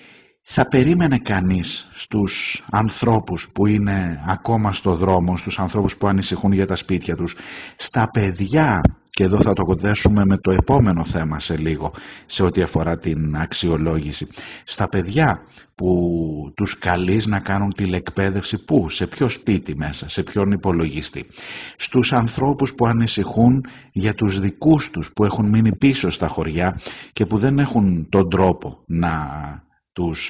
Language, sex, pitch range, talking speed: Greek, male, 90-115 Hz, 145 wpm